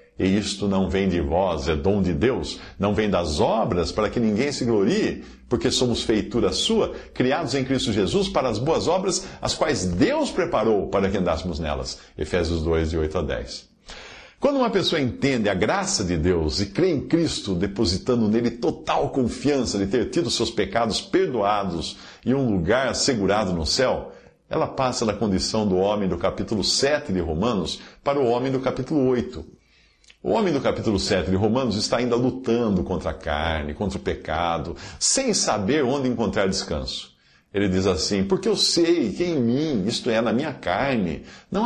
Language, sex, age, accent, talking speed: Portuguese, male, 50-69, Brazilian, 180 wpm